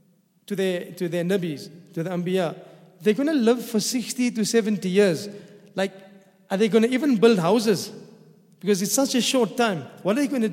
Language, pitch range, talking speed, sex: English, 195-225 Hz, 205 wpm, male